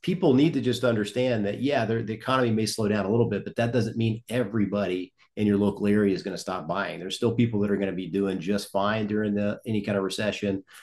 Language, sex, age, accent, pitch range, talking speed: English, male, 40-59, American, 100-120 Hz, 255 wpm